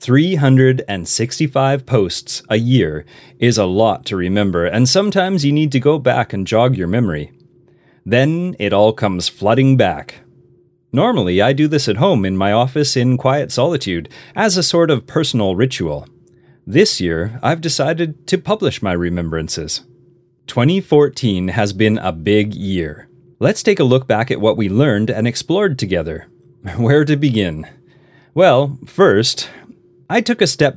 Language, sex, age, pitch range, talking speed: English, male, 30-49, 105-145 Hz, 155 wpm